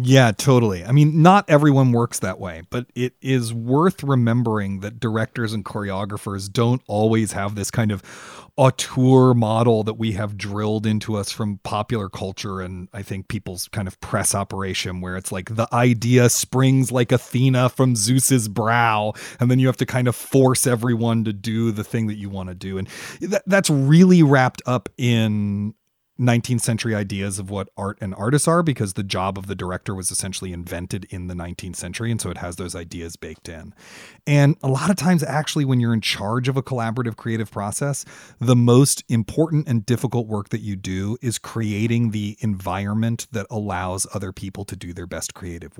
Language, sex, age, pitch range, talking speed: English, male, 30-49, 100-125 Hz, 190 wpm